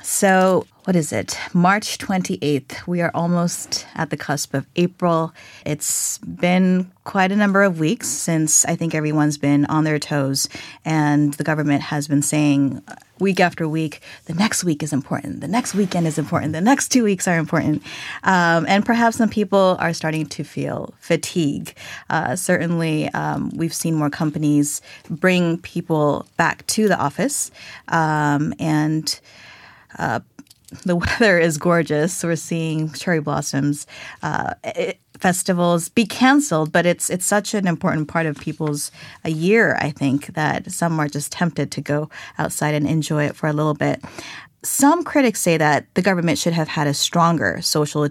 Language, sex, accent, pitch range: Korean, female, American, 150-175 Hz